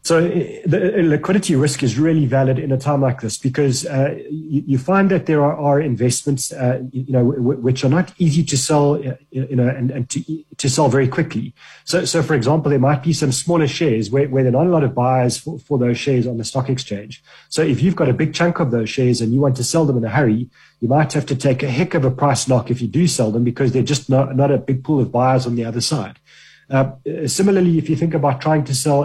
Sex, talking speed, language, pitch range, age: male, 255 wpm, English, 125-150 Hz, 30-49